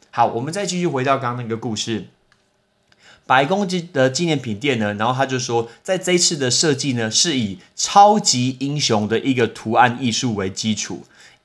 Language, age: Chinese, 30-49